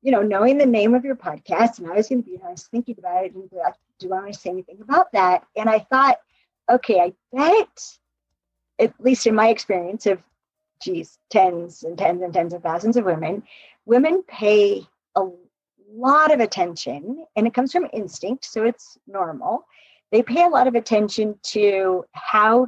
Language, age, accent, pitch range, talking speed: English, 50-69, American, 205-270 Hz, 190 wpm